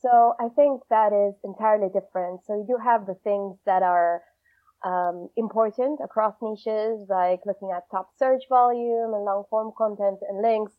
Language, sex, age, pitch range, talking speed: English, female, 20-39, 200-250 Hz, 165 wpm